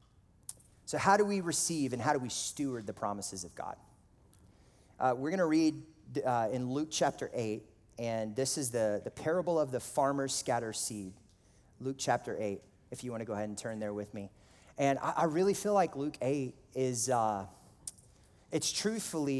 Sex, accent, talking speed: male, American, 185 wpm